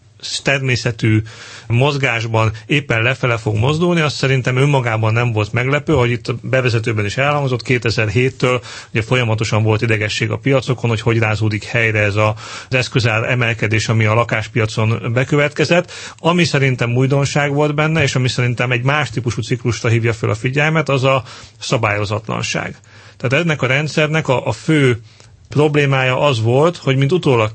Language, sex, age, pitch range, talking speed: Hungarian, male, 40-59, 115-135 Hz, 150 wpm